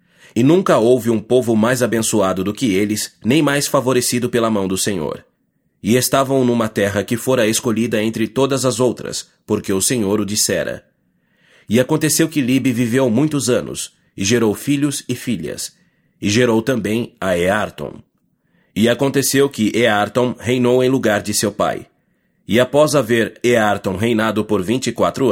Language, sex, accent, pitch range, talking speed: English, male, Brazilian, 110-130 Hz, 165 wpm